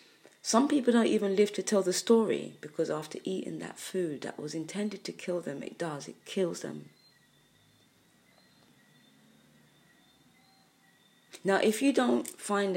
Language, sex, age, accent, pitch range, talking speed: English, female, 30-49, British, 155-200 Hz, 140 wpm